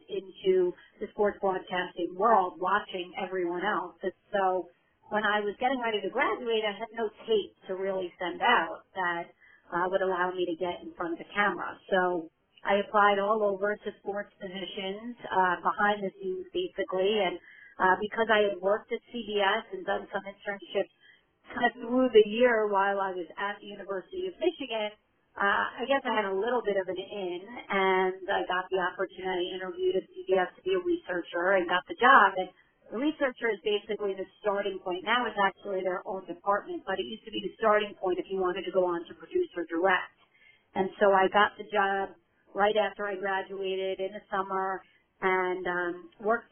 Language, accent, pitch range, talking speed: English, American, 185-215 Hz, 195 wpm